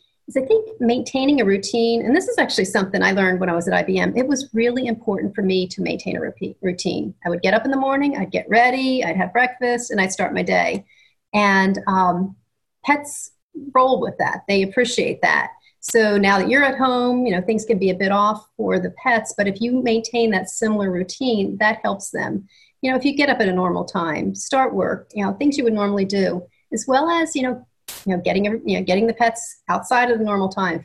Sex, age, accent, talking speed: female, 40-59, American, 230 wpm